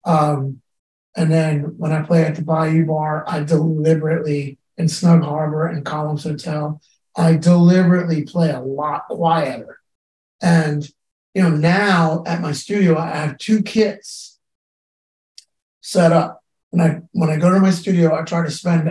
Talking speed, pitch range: 155 wpm, 155-180 Hz